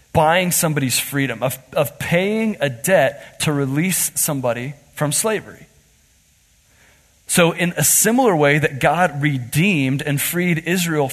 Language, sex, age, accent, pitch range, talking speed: English, male, 30-49, American, 125-170 Hz, 130 wpm